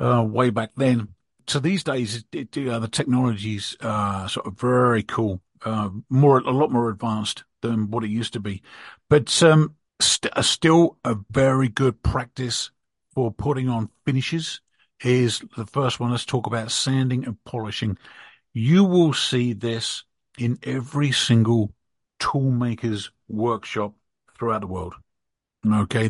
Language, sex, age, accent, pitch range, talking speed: English, male, 50-69, British, 110-135 Hz, 150 wpm